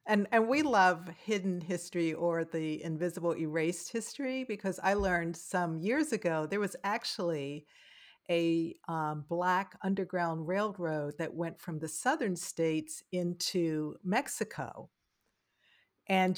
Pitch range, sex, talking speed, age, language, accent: 160-195 Hz, female, 125 wpm, 50-69, English, American